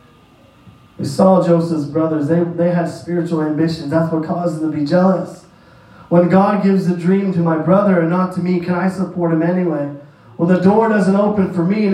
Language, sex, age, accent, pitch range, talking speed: English, male, 30-49, American, 170-215 Hz, 205 wpm